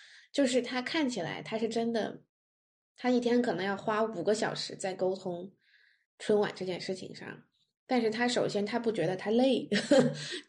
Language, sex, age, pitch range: Chinese, female, 20-39, 195-245 Hz